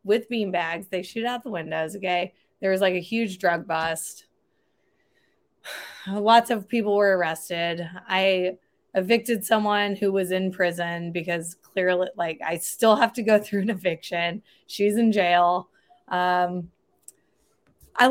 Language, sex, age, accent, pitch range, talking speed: English, female, 20-39, American, 185-240 Hz, 145 wpm